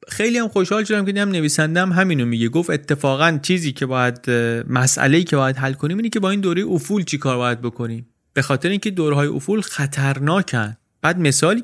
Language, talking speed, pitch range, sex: Persian, 195 wpm, 120-160 Hz, male